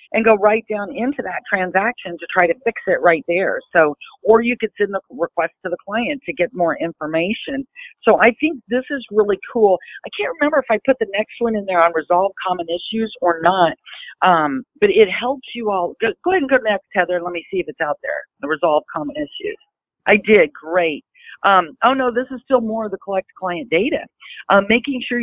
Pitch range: 185-245 Hz